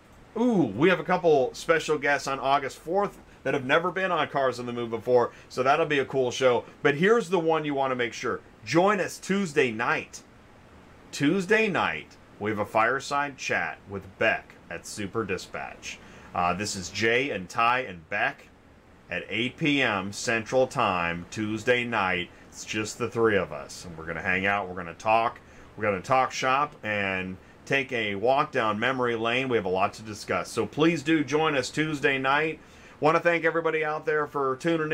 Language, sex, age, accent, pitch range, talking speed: English, male, 30-49, American, 110-150 Hz, 200 wpm